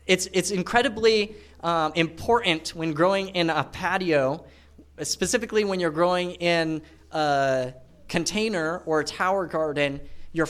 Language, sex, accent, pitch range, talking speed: English, male, American, 130-175 Hz, 125 wpm